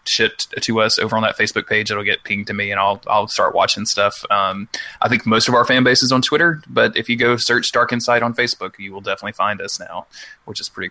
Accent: American